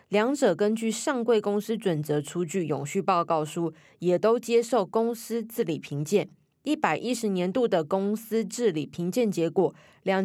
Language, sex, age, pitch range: Chinese, female, 20-39, 165-225 Hz